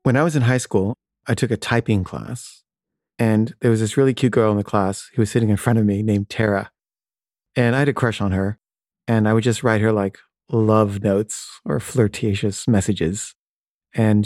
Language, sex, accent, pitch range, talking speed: English, male, American, 105-125 Hz, 210 wpm